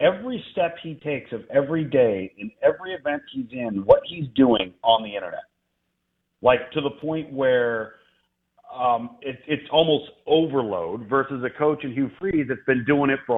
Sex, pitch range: male, 115-140 Hz